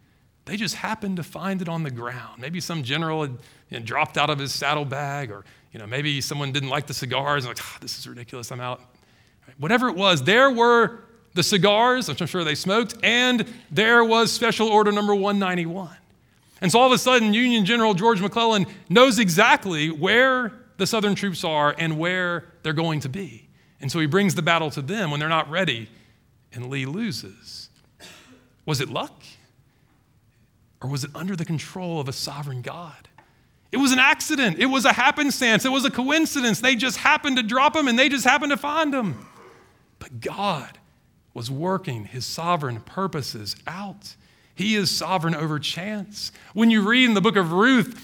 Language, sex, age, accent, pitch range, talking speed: English, male, 40-59, American, 145-230 Hz, 185 wpm